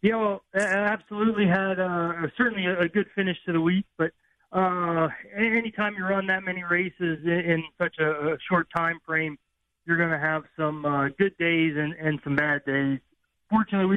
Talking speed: 185 wpm